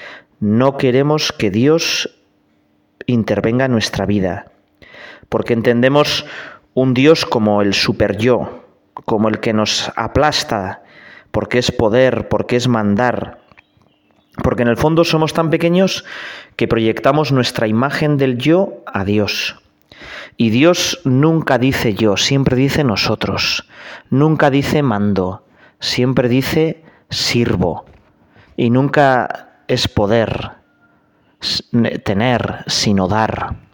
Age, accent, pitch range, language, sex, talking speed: 30-49, Spanish, 105-140 Hz, Spanish, male, 110 wpm